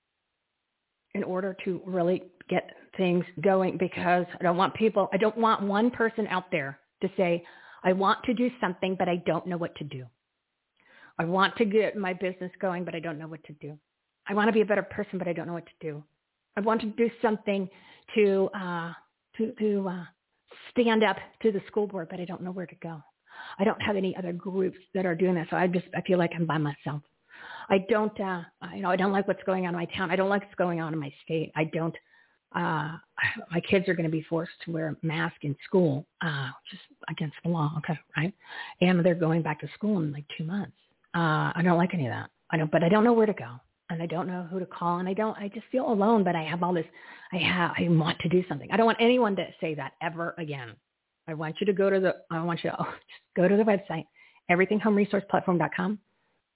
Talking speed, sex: 240 wpm, female